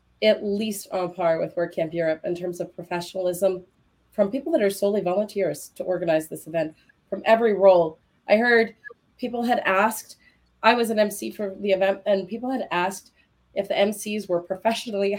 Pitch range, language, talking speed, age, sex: 175-220 Hz, English, 180 wpm, 30-49, female